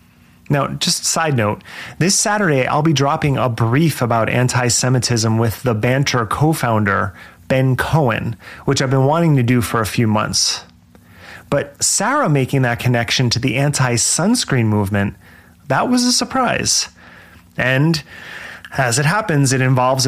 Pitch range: 115-140 Hz